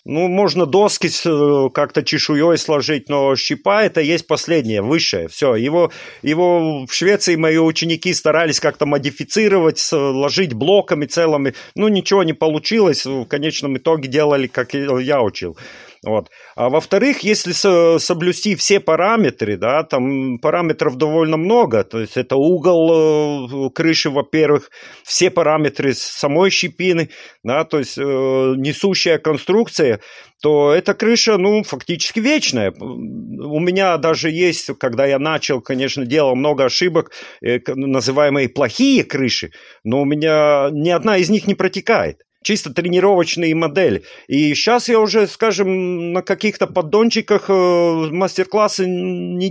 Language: Russian